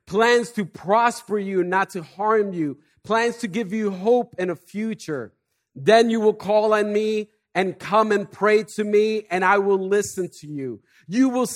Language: English